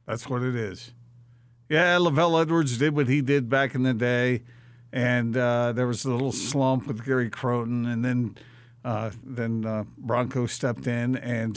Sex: male